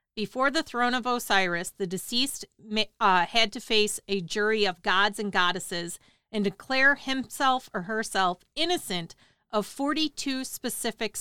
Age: 40-59